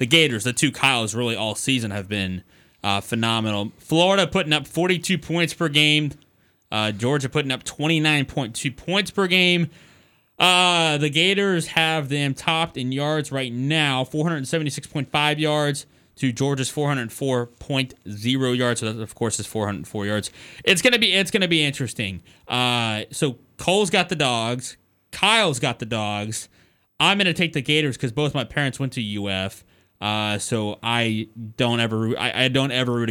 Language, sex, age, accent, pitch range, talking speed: English, male, 20-39, American, 110-150 Hz, 165 wpm